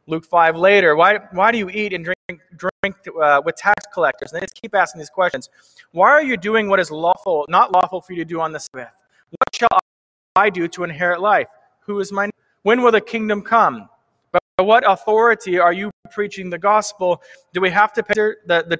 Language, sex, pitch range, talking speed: English, male, 160-205 Hz, 220 wpm